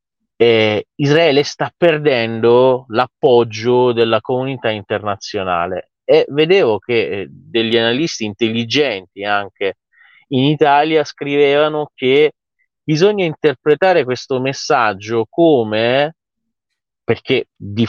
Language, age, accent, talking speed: Italian, 30-49, native, 90 wpm